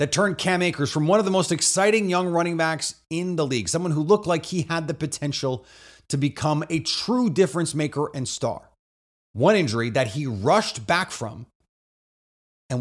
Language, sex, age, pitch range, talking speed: English, male, 30-49, 110-155 Hz, 185 wpm